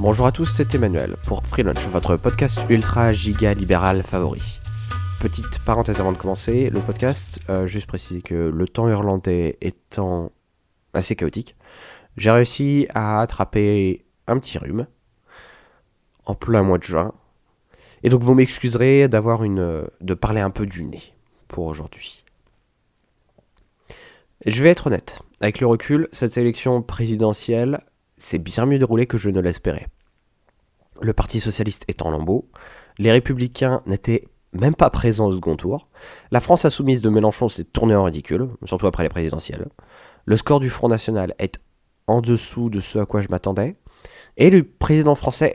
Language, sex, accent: French, male, French